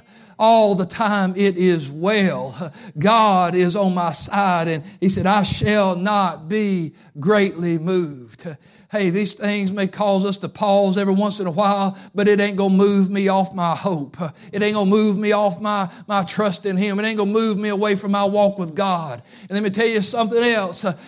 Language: English